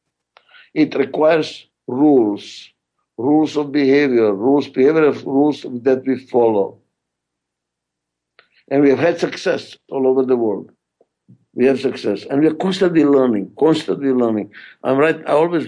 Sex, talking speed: male, 135 wpm